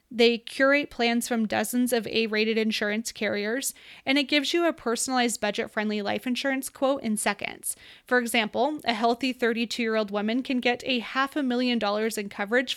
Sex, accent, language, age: female, American, English, 20-39